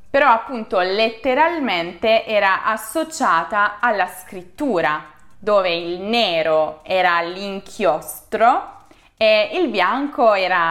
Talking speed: 90 wpm